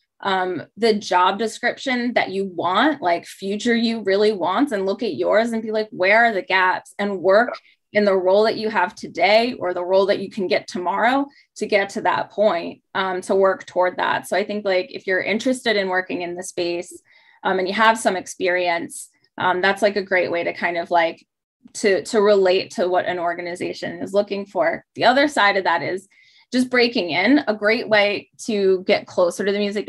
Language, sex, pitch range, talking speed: English, female, 180-225 Hz, 215 wpm